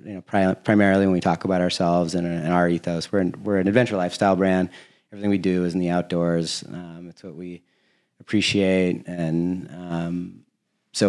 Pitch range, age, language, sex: 85-100 Hz, 30-49, English, male